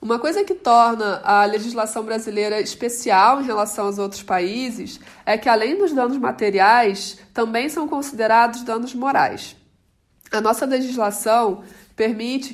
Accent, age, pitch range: Brazilian, 20-39, 205-245 Hz